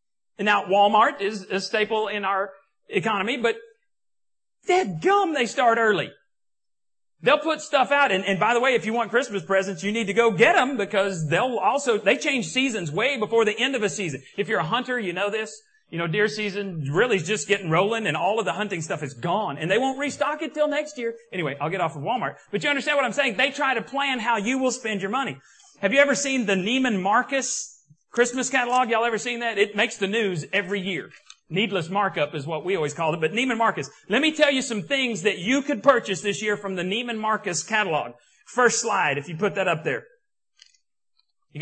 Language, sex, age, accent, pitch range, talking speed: English, male, 40-59, American, 195-275 Hz, 230 wpm